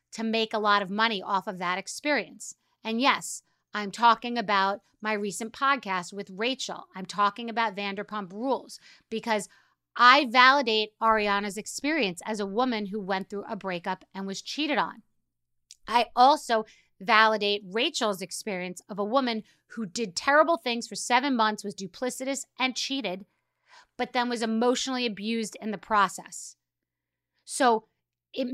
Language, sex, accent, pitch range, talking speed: English, female, American, 200-245 Hz, 150 wpm